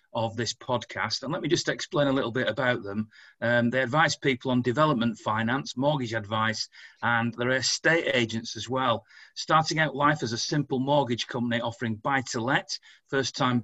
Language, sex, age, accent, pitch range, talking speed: English, male, 40-59, British, 110-130 Hz, 170 wpm